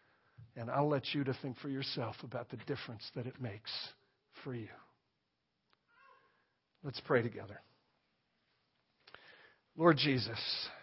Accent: American